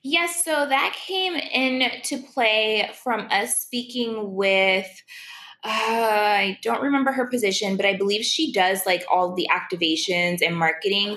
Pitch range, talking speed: 180-245 Hz, 145 wpm